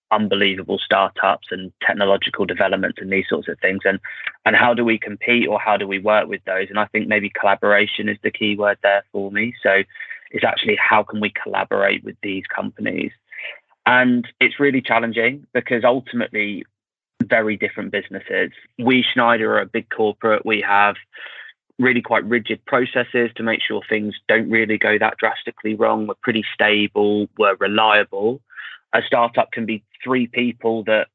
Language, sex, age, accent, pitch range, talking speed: English, male, 20-39, British, 100-115 Hz, 170 wpm